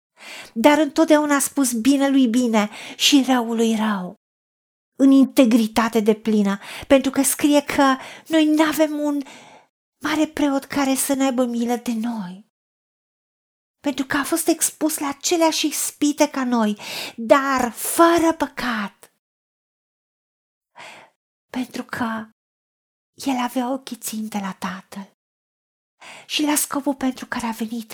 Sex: female